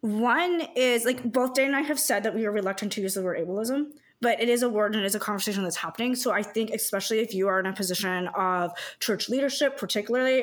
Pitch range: 210-280 Hz